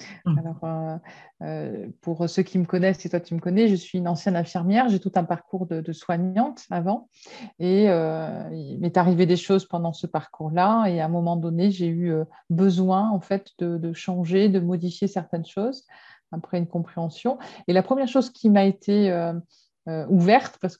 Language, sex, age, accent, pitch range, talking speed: French, female, 30-49, French, 170-205 Hz, 195 wpm